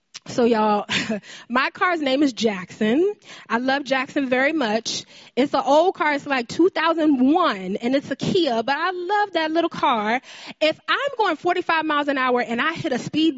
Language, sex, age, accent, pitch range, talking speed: English, female, 20-39, American, 220-315 Hz, 185 wpm